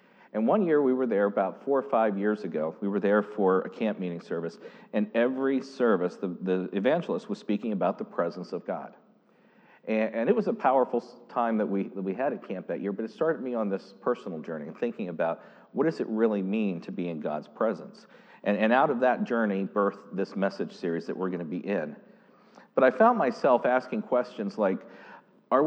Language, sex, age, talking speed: English, male, 50-69, 220 wpm